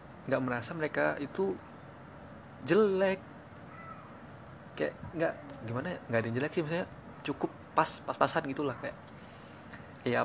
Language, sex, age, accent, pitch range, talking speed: Indonesian, male, 20-39, native, 125-155 Hz, 130 wpm